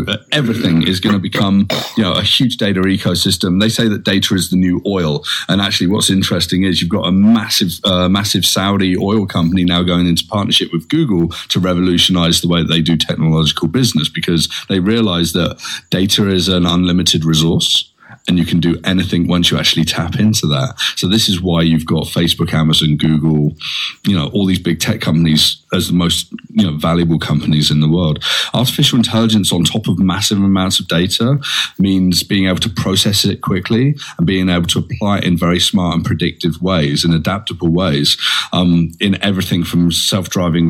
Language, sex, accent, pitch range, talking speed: English, male, British, 85-100 Hz, 190 wpm